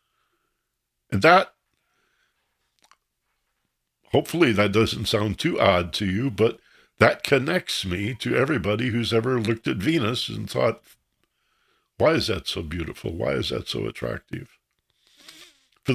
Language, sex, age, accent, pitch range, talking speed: English, male, 60-79, American, 100-140 Hz, 130 wpm